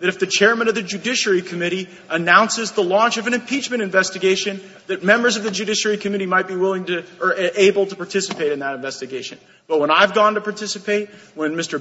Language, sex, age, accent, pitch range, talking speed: English, male, 30-49, American, 190-230 Hz, 205 wpm